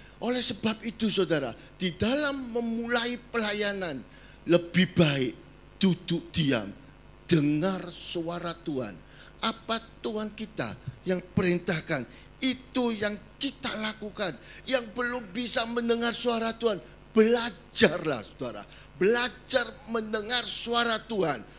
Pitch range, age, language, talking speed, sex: 175-250 Hz, 40-59, Indonesian, 100 wpm, male